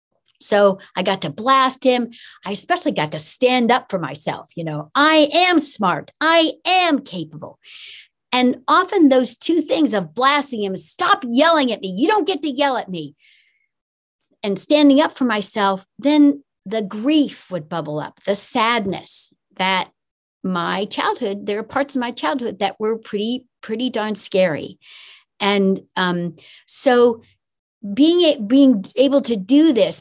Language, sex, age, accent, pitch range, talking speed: English, female, 60-79, American, 195-285 Hz, 155 wpm